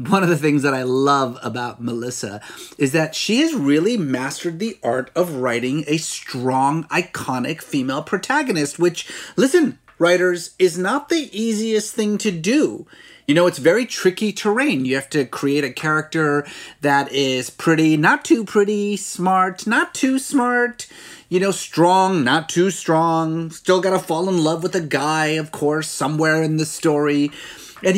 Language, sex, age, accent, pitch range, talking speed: English, male, 30-49, American, 140-190 Hz, 165 wpm